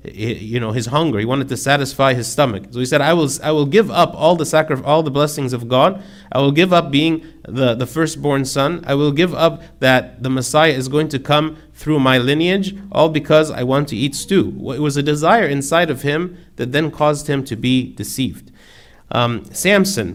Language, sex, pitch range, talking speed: English, male, 125-155 Hz, 215 wpm